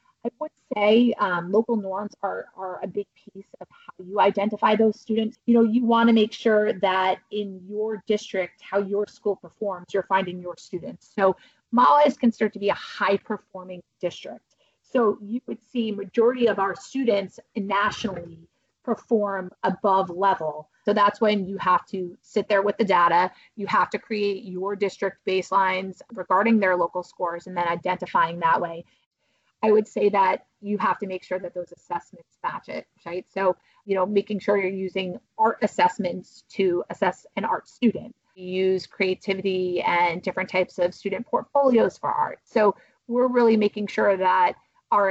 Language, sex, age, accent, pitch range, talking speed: English, female, 30-49, American, 180-215 Hz, 175 wpm